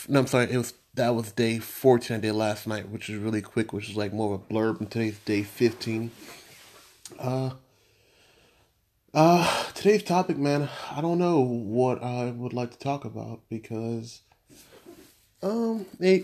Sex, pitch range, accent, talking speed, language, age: male, 105-120 Hz, American, 165 wpm, English, 30-49